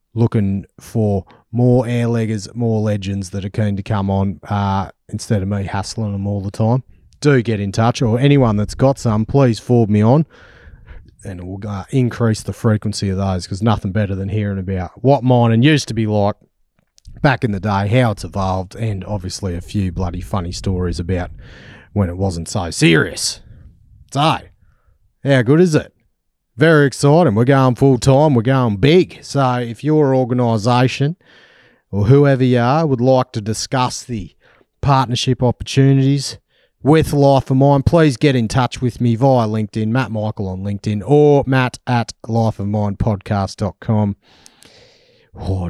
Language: English